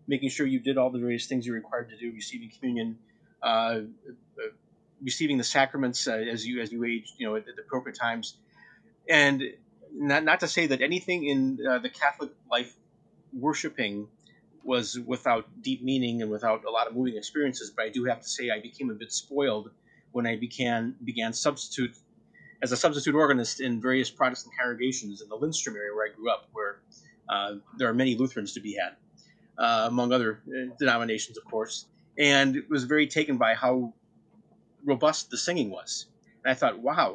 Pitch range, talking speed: 115-140 Hz, 190 wpm